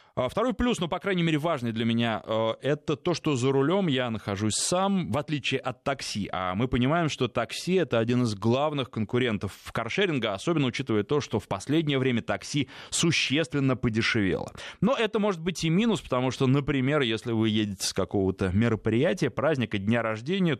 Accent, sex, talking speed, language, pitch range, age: native, male, 180 wpm, Russian, 105-160 Hz, 20-39